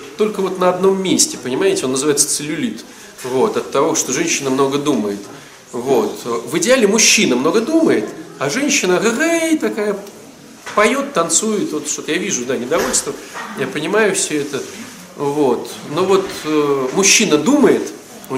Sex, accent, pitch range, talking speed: male, native, 145-220 Hz, 145 wpm